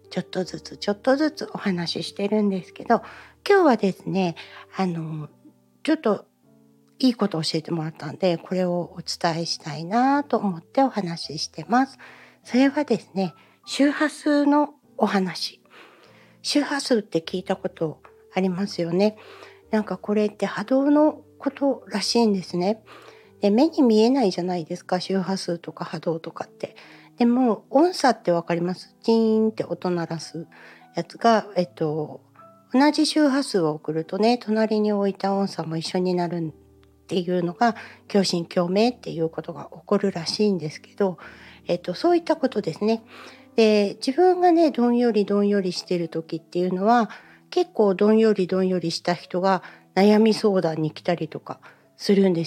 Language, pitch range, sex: Japanese, 170-230 Hz, female